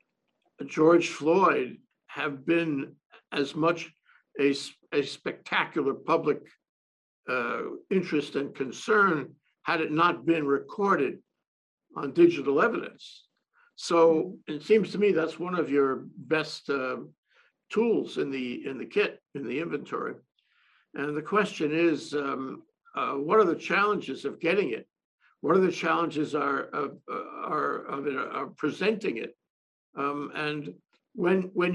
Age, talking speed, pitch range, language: 60-79, 130 wpm, 150-205 Hz, English